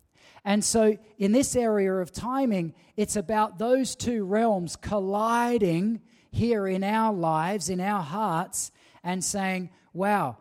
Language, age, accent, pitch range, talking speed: English, 40-59, Australian, 170-210 Hz, 135 wpm